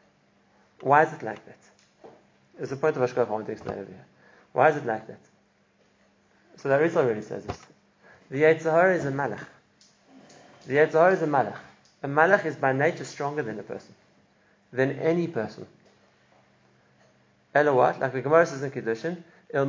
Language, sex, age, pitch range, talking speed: English, male, 30-49, 125-160 Hz, 170 wpm